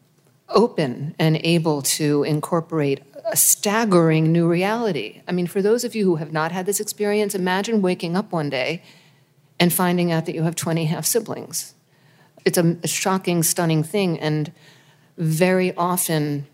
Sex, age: female, 50-69